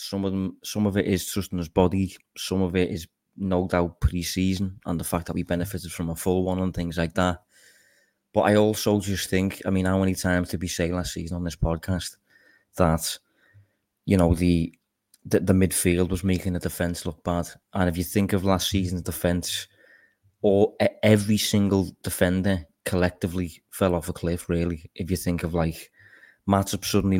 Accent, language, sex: British, English, male